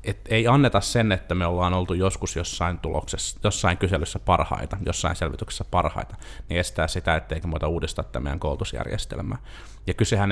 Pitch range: 85-110 Hz